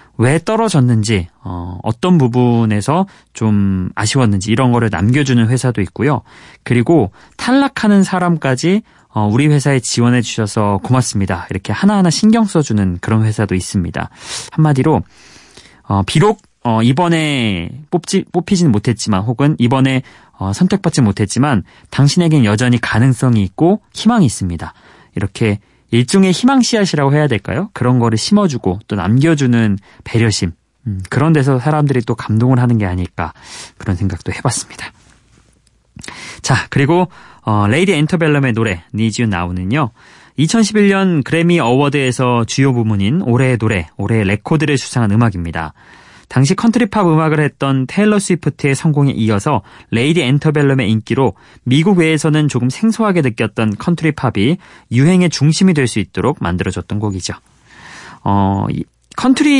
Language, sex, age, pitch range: Korean, male, 30-49, 110-160 Hz